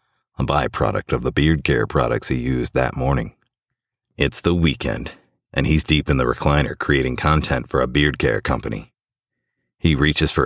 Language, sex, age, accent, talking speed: English, male, 40-59, American, 170 wpm